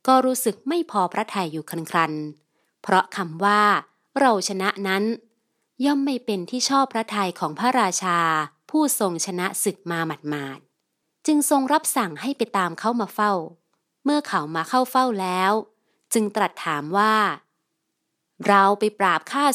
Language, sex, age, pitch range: Thai, female, 30-49, 180-240 Hz